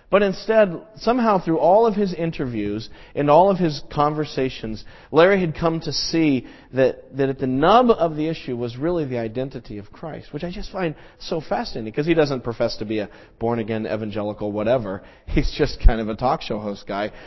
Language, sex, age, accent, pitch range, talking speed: English, male, 40-59, American, 115-170 Hz, 200 wpm